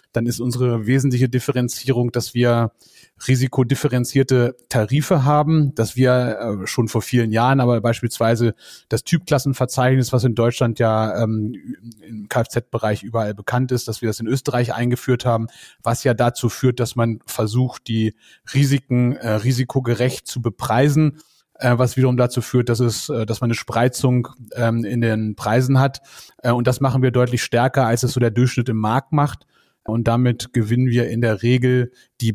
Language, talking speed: German, 155 wpm